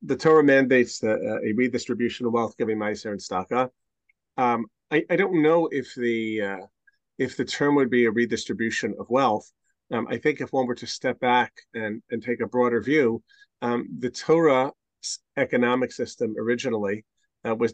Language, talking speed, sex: English, 180 wpm, male